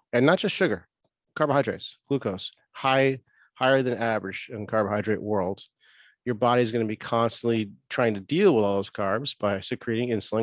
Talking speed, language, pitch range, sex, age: 175 wpm, English, 110-130 Hz, male, 30-49